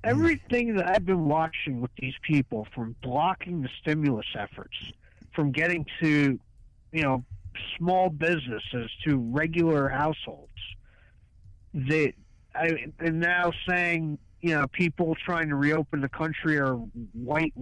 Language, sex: English, male